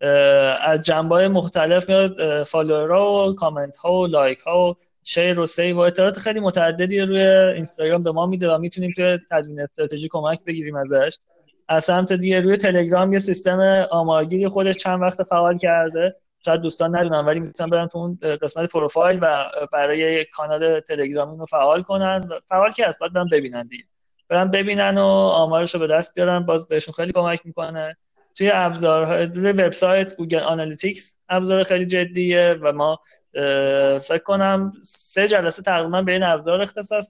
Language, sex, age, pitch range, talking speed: Persian, male, 30-49, 155-190 Hz, 155 wpm